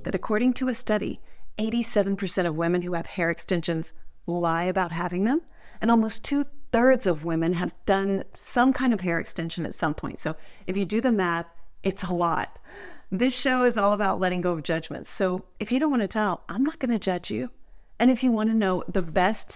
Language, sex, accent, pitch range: English, female, American, 170-210 Hz